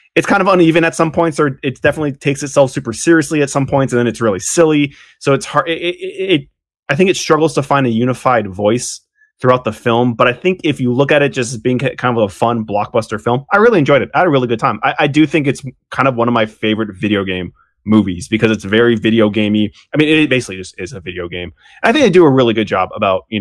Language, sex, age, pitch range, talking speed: English, male, 20-39, 110-140 Hz, 270 wpm